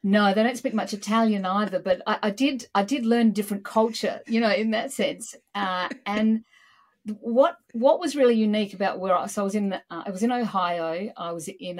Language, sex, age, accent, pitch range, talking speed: English, female, 50-69, Australian, 180-230 Hz, 220 wpm